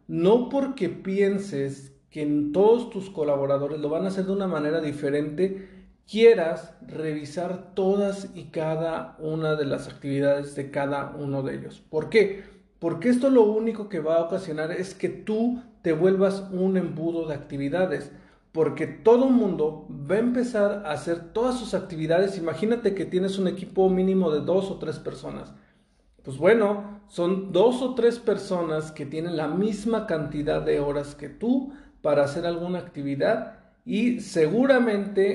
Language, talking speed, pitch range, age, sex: Spanish, 160 wpm, 155-205 Hz, 40-59, male